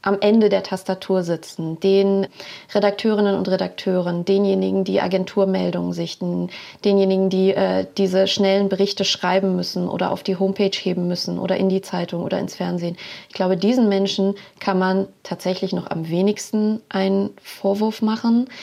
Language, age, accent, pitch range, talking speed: German, 30-49, German, 190-205 Hz, 150 wpm